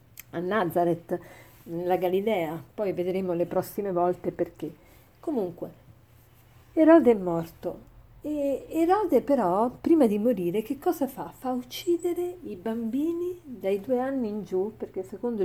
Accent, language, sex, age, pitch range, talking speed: native, Italian, female, 40-59, 180-255 Hz, 130 wpm